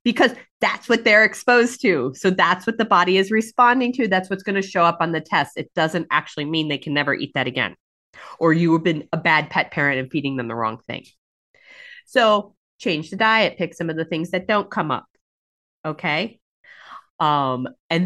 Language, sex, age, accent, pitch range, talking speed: English, female, 30-49, American, 145-190 Hz, 210 wpm